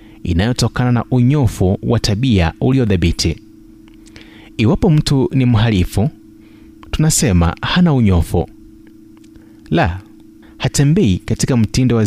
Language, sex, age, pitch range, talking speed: Swahili, male, 30-49, 100-125 Hz, 90 wpm